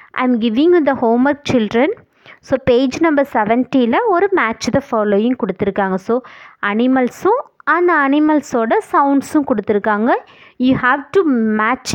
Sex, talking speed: female, 120 wpm